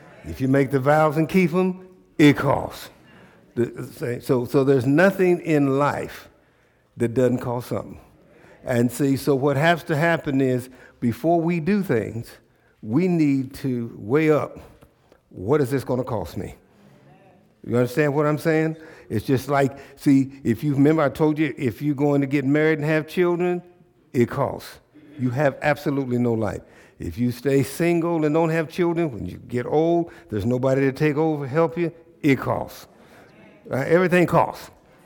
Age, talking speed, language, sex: 60-79, 170 wpm, English, male